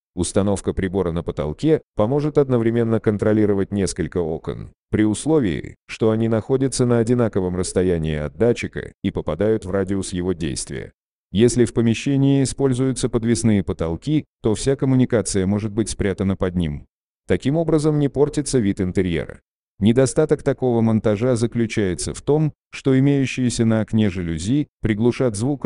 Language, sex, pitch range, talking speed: Russian, male, 95-125 Hz, 135 wpm